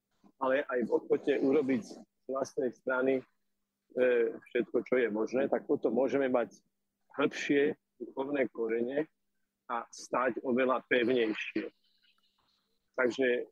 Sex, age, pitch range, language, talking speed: male, 40-59, 125-160 Hz, Slovak, 105 wpm